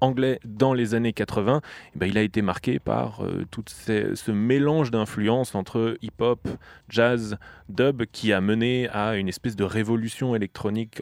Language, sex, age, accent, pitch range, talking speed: French, male, 20-39, French, 100-125 Hz, 165 wpm